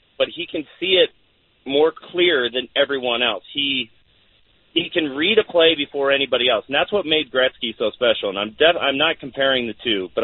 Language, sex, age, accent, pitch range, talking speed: English, male, 40-59, American, 120-165 Hz, 205 wpm